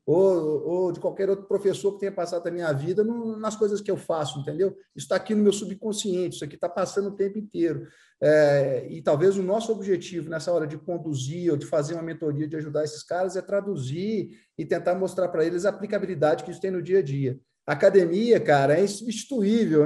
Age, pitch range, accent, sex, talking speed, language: 50-69, 165-215 Hz, Brazilian, male, 210 wpm, Portuguese